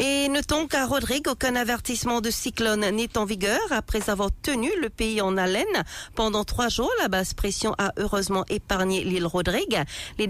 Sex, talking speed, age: female, 175 wpm, 50-69